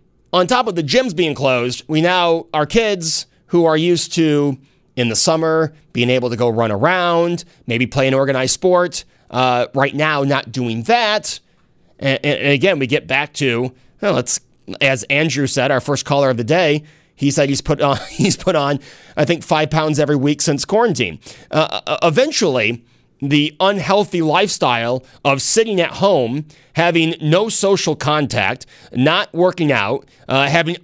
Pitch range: 125-165 Hz